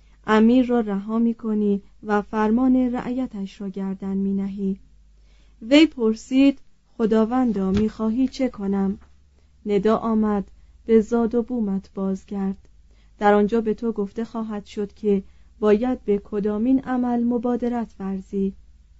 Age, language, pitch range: 30-49, Persian, 200-240 Hz